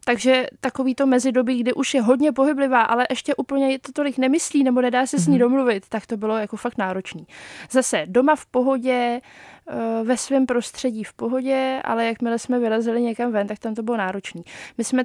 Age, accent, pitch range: 20-39, native, 230-255 Hz